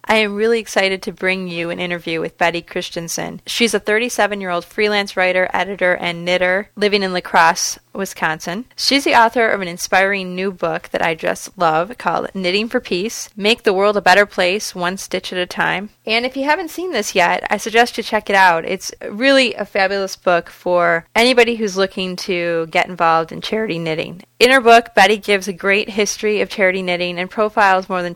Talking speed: 200 wpm